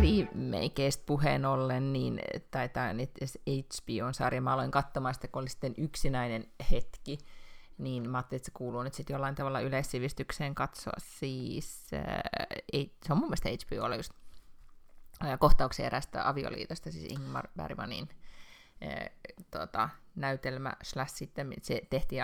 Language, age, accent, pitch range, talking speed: Finnish, 30-49, native, 130-170 Hz, 140 wpm